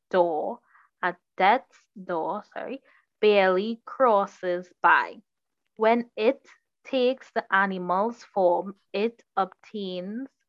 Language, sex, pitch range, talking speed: English, female, 180-225 Hz, 90 wpm